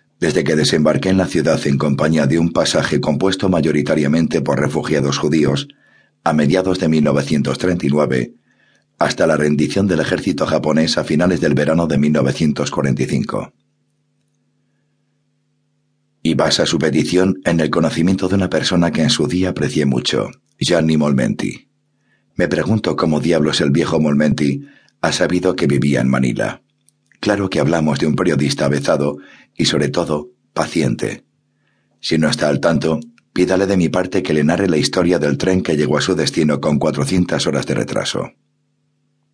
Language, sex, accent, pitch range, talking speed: Spanish, male, Spanish, 75-95 Hz, 155 wpm